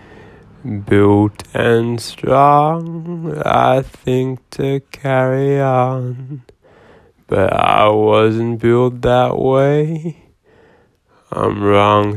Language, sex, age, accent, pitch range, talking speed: English, male, 20-39, American, 115-150 Hz, 80 wpm